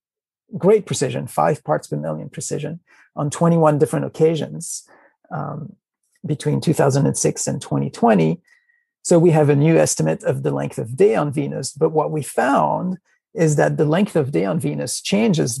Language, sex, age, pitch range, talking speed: English, male, 40-59, 145-175 Hz, 175 wpm